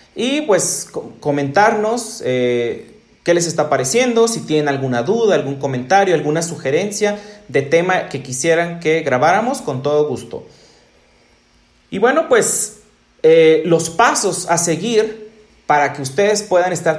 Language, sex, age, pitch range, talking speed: Spanish, male, 40-59, 145-205 Hz, 135 wpm